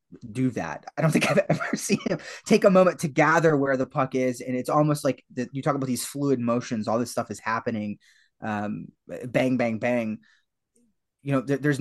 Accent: American